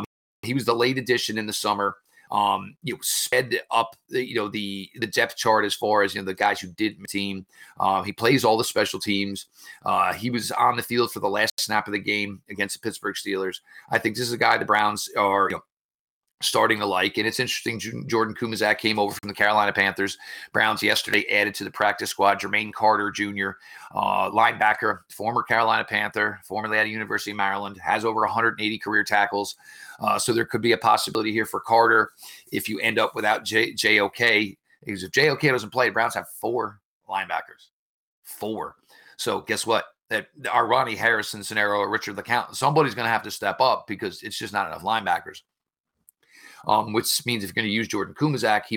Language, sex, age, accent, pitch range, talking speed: English, male, 40-59, American, 100-115 Hz, 205 wpm